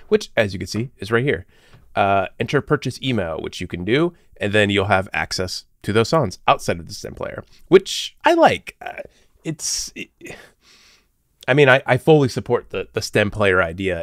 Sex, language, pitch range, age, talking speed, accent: male, English, 90-110 Hz, 30-49, 195 wpm, American